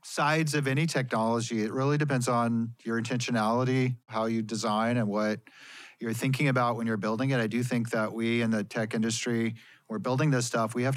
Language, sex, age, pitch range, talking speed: English, male, 40-59, 115-135 Hz, 200 wpm